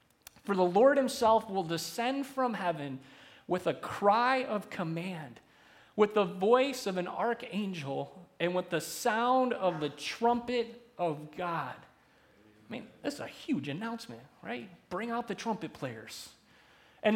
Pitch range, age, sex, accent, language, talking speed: 150-205 Hz, 30-49, male, American, English, 145 wpm